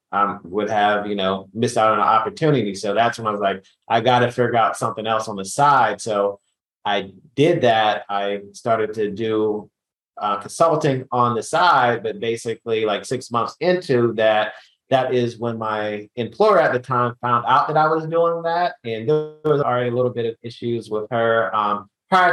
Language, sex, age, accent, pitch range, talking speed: English, male, 30-49, American, 105-125 Hz, 200 wpm